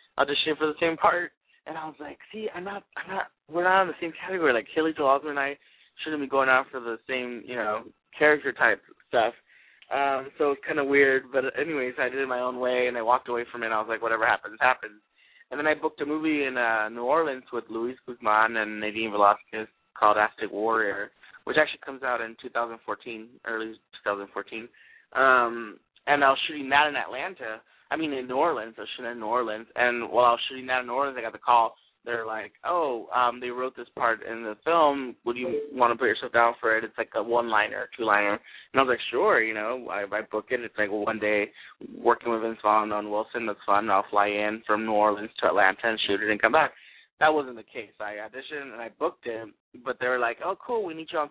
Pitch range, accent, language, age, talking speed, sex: 110-145 Hz, American, English, 20-39, 240 wpm, male